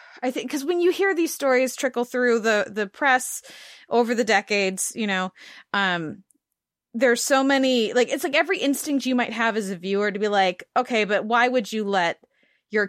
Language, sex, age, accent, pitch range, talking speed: English, female, 20-39, American, 195-245 Hz, 200 wpm